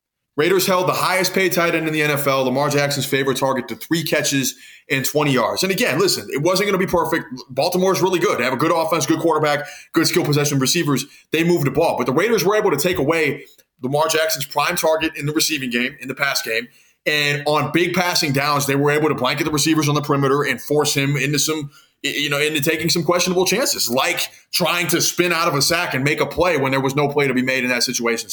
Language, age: English, 20-39